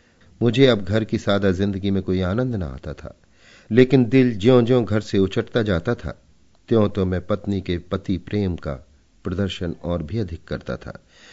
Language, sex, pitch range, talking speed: Hindi, male, 85-110 Hz, 185 wpm